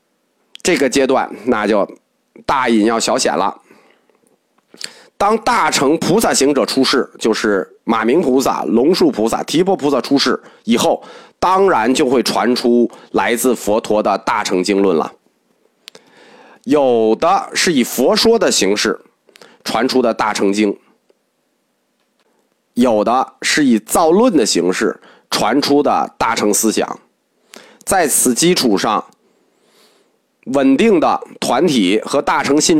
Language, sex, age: Chinese, male, 30-49